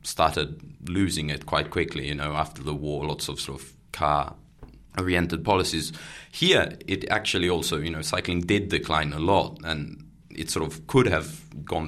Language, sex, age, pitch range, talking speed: English, male, 20-39, 75-85 Hz, 175 wpm